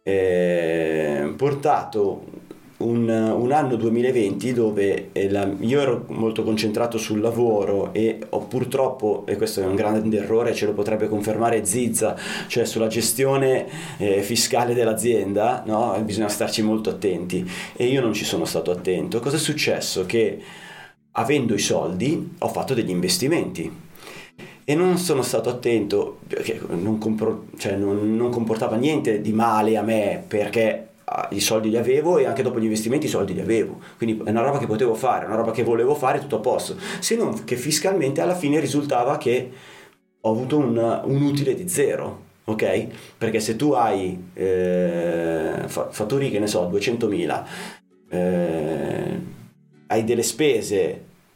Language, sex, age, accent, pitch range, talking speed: Italian, male, 30-49, native, 105-120 Hz, 145 wpm